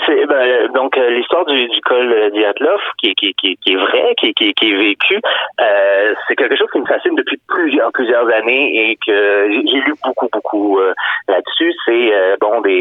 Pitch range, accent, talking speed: 295-445 Hz, French, 205 wpm